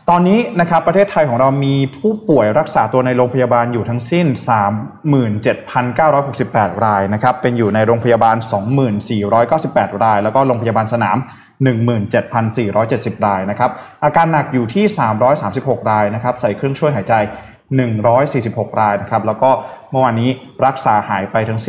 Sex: male